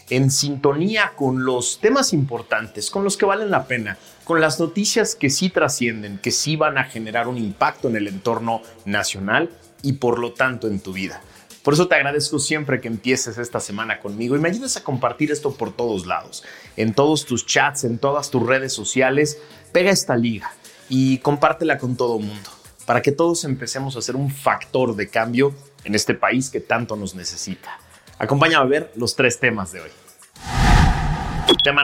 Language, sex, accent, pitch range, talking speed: Spanish, male, Mexican, 110-145 Hz, 185 wpm